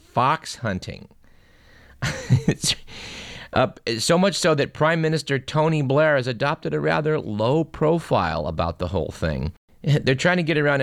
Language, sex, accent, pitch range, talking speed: English, male, American, 90-140 Hz, 150 wpm